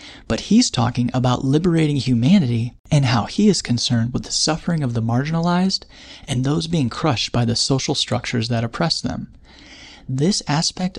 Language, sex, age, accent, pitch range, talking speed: English, male, 30-49, American, 120-160 Hz, 165 wpm